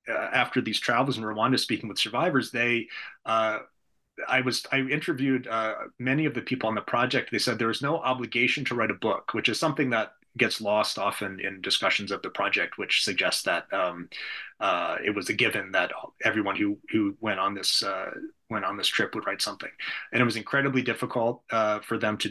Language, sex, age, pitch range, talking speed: English, male, 30-49, 105-130 Hz, 210 wpm